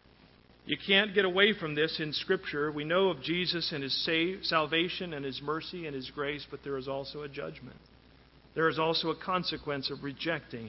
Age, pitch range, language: 50-69, 140-170 Hz, English